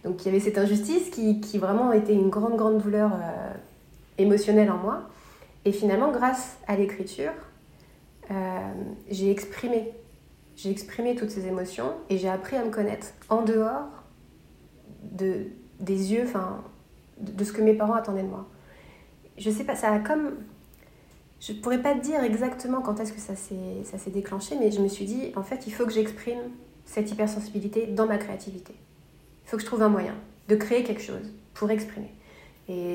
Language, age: French, 30-49